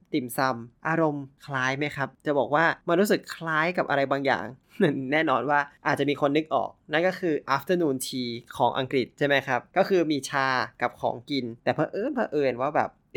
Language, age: Thai, 20-39